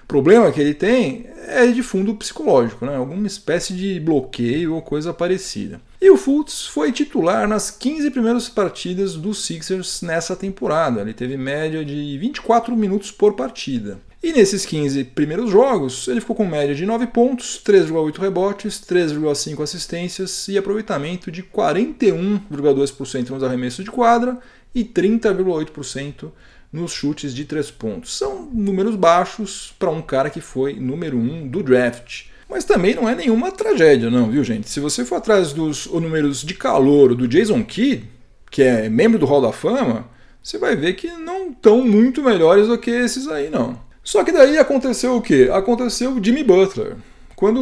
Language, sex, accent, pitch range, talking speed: Portuguese, male, Brazilian, 150-235 Hz, 165 wpm